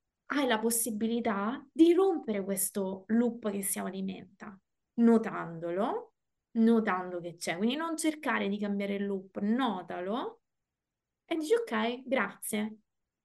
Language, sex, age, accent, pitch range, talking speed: Italian, female, 20-39, native, 205-255 Hz, 120 wpm